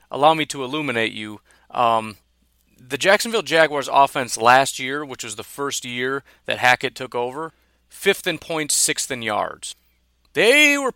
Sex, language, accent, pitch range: male, English, American, 120-175 Hz